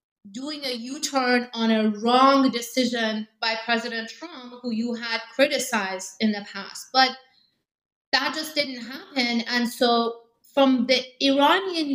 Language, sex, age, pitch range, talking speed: English, female, 30-49, 190-245 Hz, 135 wpm